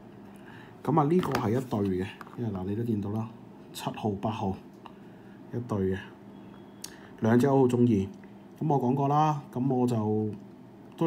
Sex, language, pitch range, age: male, Chinese, 100-120 Hz, 20-39